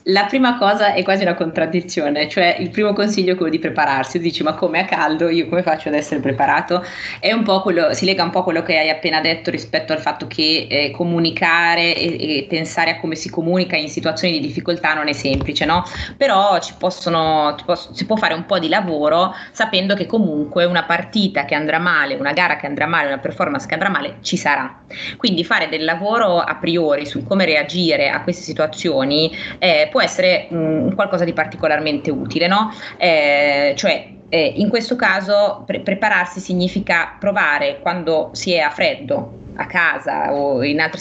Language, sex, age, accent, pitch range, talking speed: Italian, female, 20-39, native, 160-205 Hz, 195 wpm